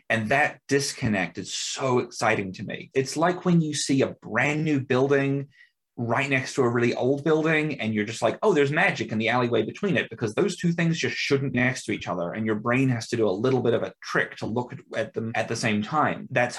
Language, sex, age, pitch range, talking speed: English, male, 30-49, 110-140 Hz, 245 wpm